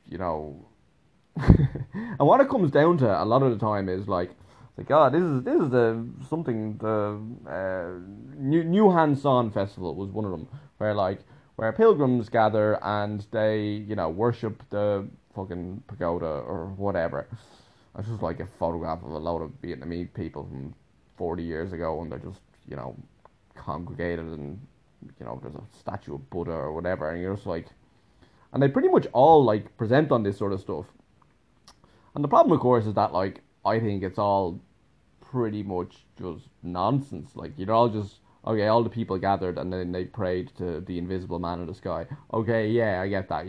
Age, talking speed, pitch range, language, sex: 20-39, 190 wpm, 90-130 Hz, English, male